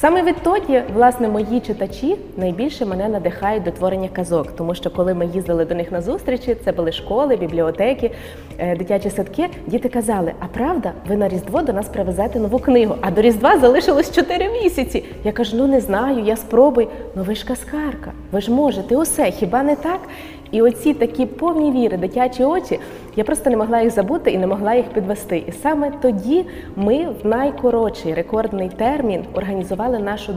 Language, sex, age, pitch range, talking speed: Ukrainian, female, 20-39, 190-255 Hz, 180 wpm